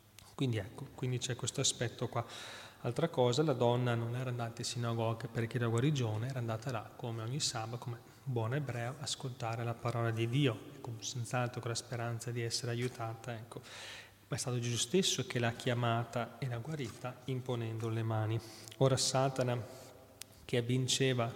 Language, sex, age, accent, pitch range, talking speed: Italian, male, 30-49, native, 115-130 Hz, 170 wpm